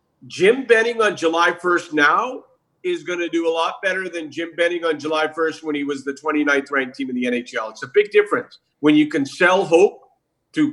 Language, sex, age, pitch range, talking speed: English, male, 50-69, 155-250 Hz, 220 wpm